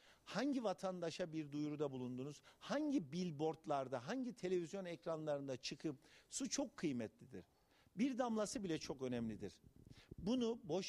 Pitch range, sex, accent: 145-200 Hz, male, native